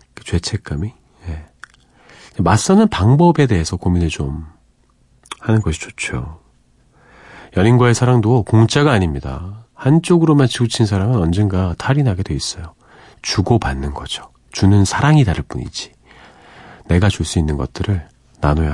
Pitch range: 80-125 Hz